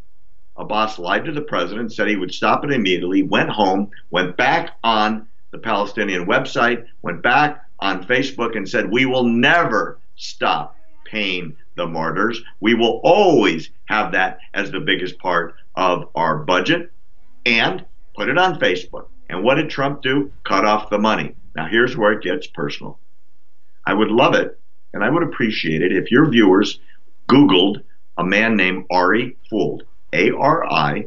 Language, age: English, 50-69